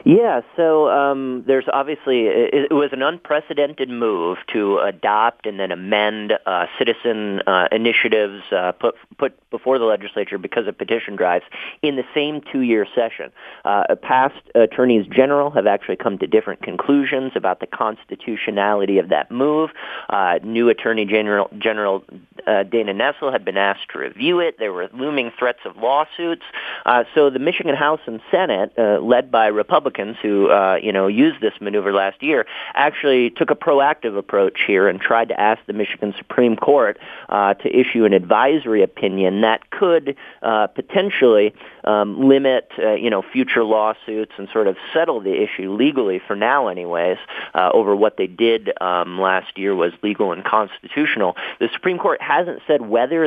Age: 40-59